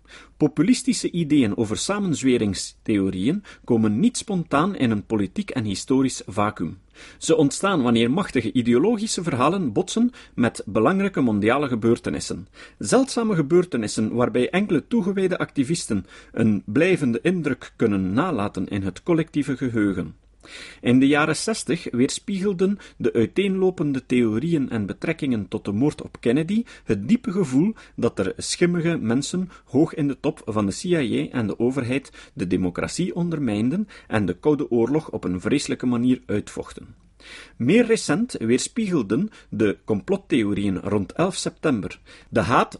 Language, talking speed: Dutch, 130 wpm